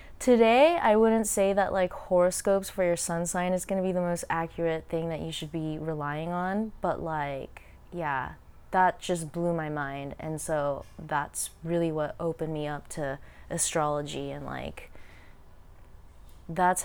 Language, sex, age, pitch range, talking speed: English, female, 20-39, 160-195 Hz, 160 wpm